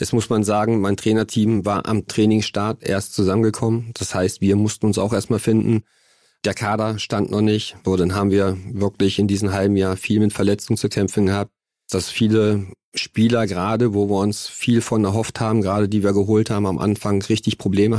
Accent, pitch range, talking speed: German, 100-115 Hz, 195 wpm